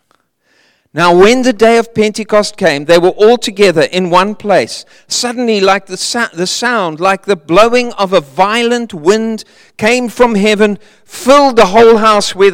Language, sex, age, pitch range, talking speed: English, male, 50-69, 175-230 Hz, 165 wpm